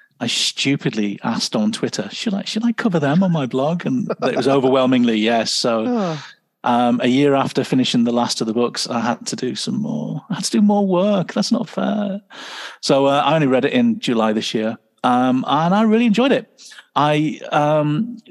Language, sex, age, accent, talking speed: English, male, 40-59, British, 205 wpm